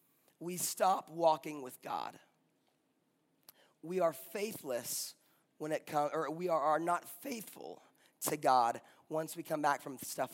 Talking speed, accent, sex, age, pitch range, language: 145 wpm, American, male, 30-49, 140-180 Hz, English